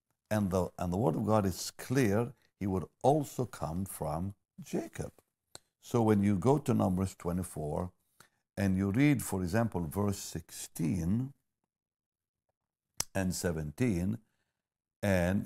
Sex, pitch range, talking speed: male, 85-105 Hz, 125 wpm